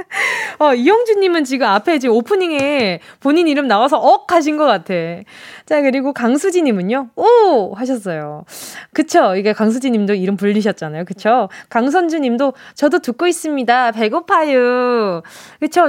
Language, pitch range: Korean, 215-330 Hz